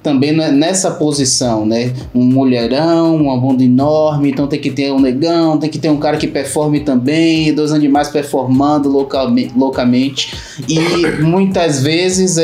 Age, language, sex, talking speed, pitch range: 20-39, Portuguese, male, 150 wpm, 130-150 Hz